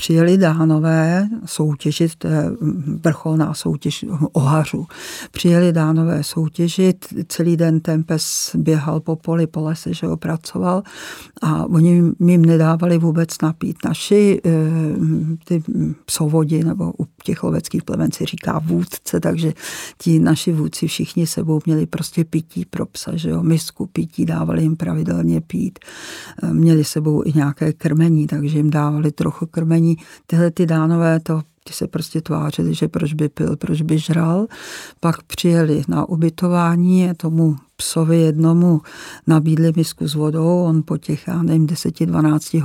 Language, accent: Czech, native